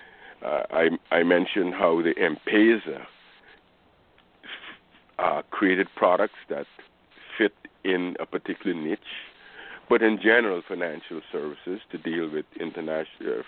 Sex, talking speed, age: male, 110 wpm, 50-69